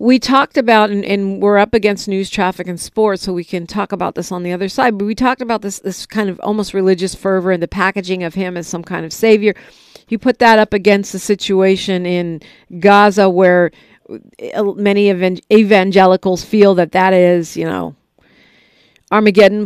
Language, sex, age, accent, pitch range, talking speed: English, female, 50-69, American, 185-225 Hz, 190 wpm